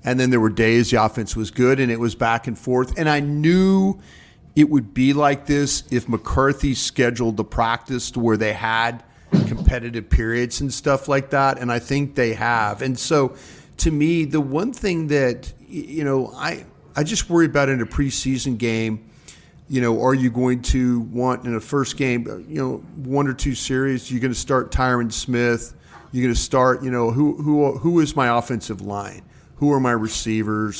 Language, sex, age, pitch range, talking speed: English, male, 40-59, 115-135 Hz, 200 wpm